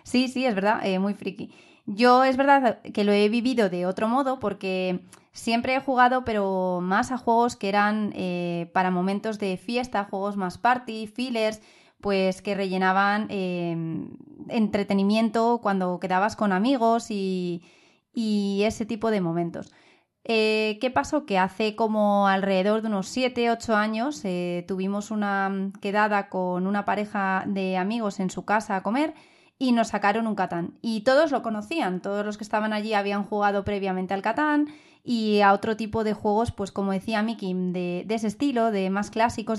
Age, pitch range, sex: 20-39, 195-230 Hz, female